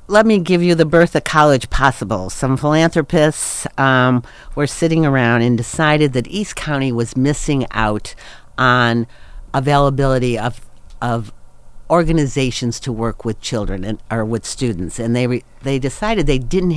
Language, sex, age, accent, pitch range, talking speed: English, female, 50-69, American, 115-145 Hz, 155 wpm